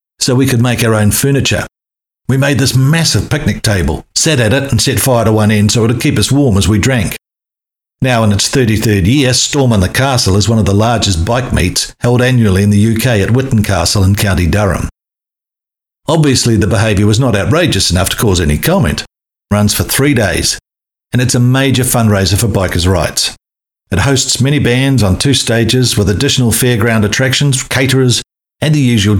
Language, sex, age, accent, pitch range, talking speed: English, male, 50-69, Australian, 100-125 Hz, 195 wpm